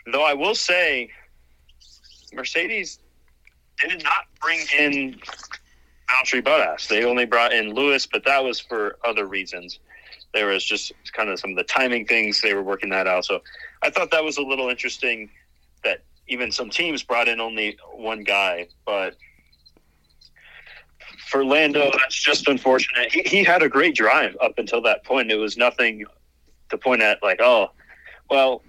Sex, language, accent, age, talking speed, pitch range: male, English, American, 30-49, 165 wpm, 80-130 Hz